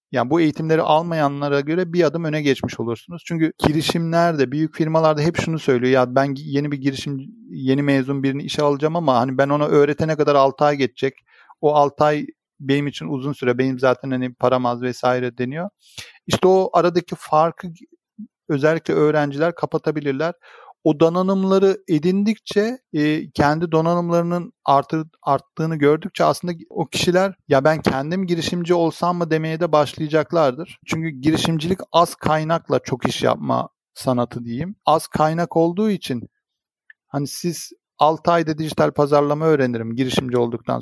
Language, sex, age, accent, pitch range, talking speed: Turkish, male, 40-59, native, 145-175 Hz, 145 wpm